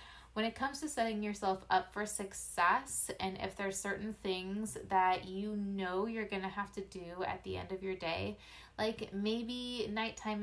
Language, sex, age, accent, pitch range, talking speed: English, female, 20-39, American, 185-210 Hz, 185 wpm